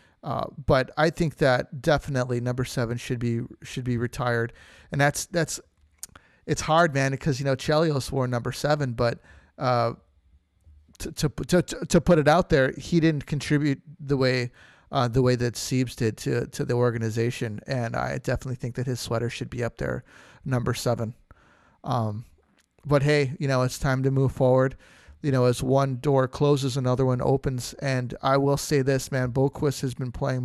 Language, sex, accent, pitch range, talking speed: English, male, American, 120-145 Hz, 185 wpm